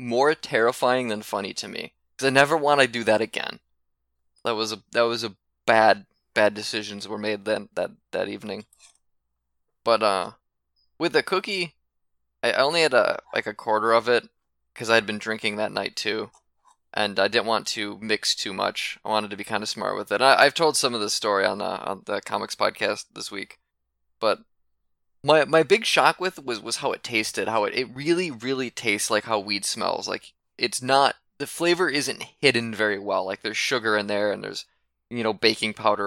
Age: 20-39